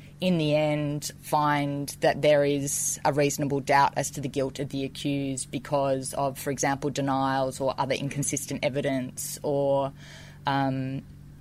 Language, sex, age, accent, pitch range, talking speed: English, female, 20-39, Australian, 140-150 Hz, 145 wpm